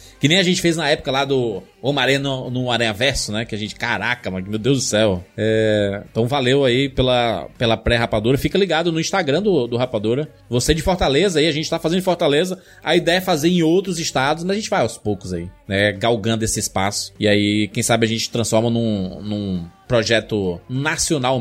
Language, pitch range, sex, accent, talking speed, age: Portuguese, 115-185 Hz, male, Brazilian, 215 wpm, 20-39